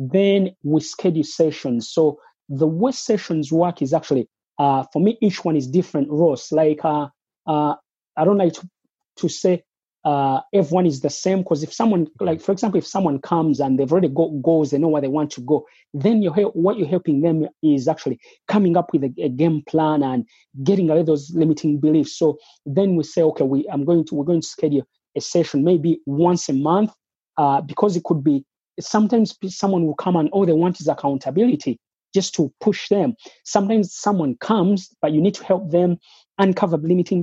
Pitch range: 150-185 Hz